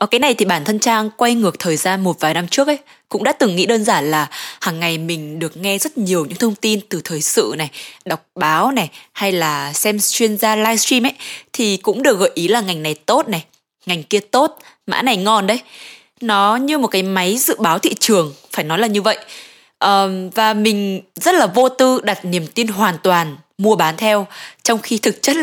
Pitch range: 175-240 Hz